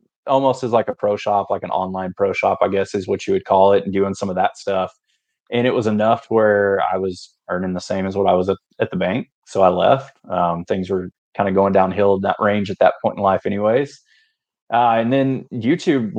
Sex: male